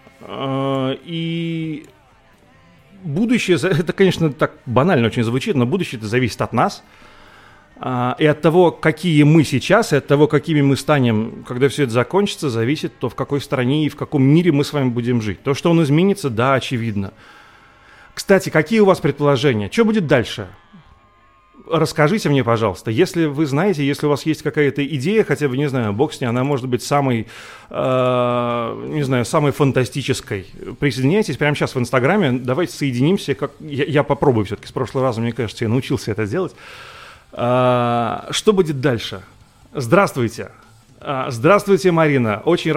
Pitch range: 125-160 Hz